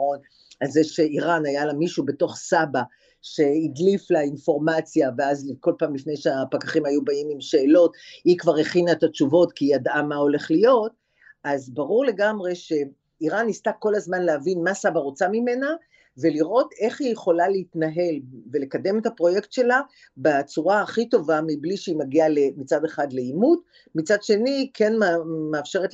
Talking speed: 155 wpm